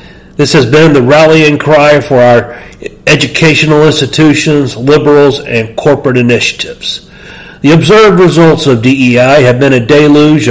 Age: 40-59